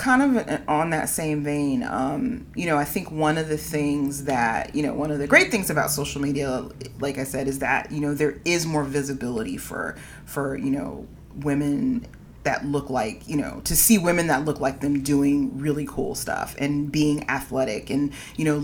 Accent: American